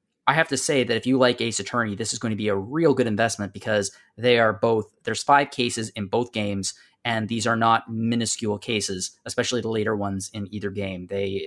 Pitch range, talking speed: 105-130 Hz, 225 wpm